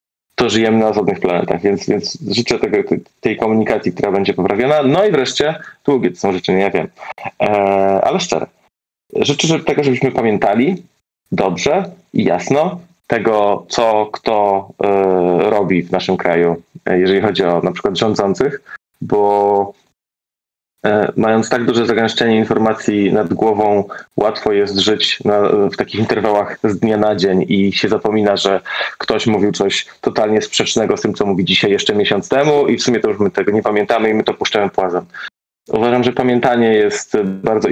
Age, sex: 20-39, male